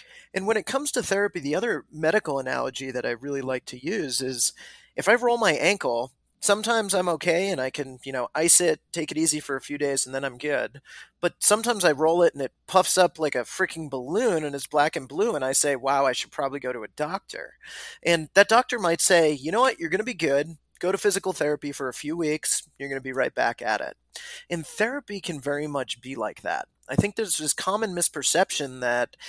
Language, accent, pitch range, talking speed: English, American, 140-190 Hz, 240 wpm